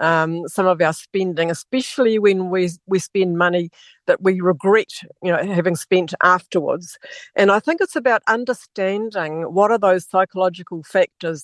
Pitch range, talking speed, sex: 180-230 Hz, 165 wpm, female